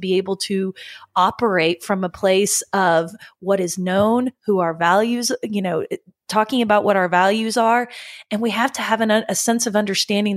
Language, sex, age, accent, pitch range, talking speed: English, female, 30-49, American, 185-220 Hz, 180 wpm